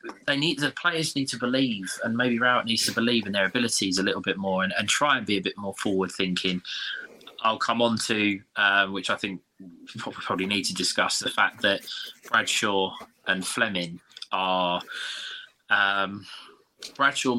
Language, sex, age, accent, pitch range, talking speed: English, male, 20-39, British, 95-120 Hz, 175 wpm